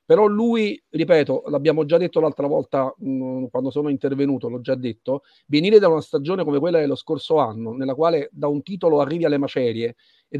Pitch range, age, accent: 140-185 Hz, 40-59, native